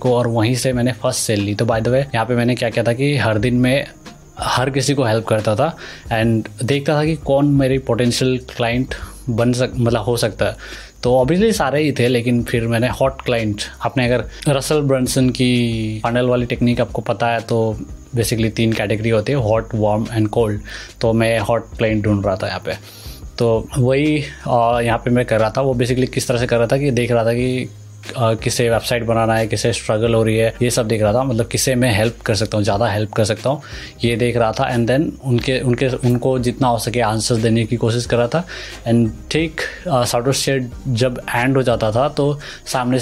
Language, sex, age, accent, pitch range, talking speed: Hindi, male, 20-39, native, 115-130 Hz, 220 wpm